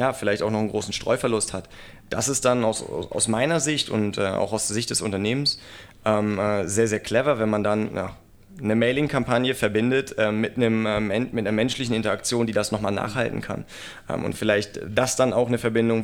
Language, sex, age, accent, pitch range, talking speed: German, male, 30-49, German, 105-125 Hz, 210 wpm